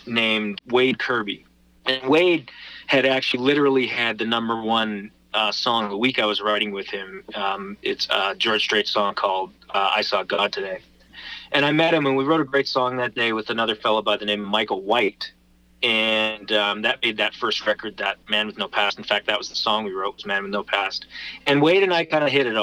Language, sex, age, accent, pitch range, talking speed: English, male, 30-49, American, 105-135 Hz, 230 wpm